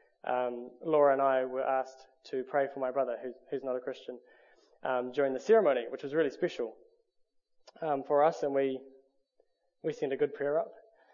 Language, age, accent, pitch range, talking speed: English, 20-39, Australian, 140-195 Hz, 190 wpm